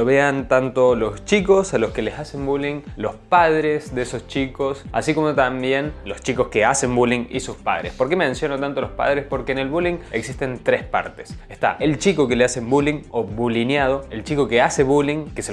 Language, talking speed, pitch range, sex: Spanish, 215 wpm, 120-150 Hz, male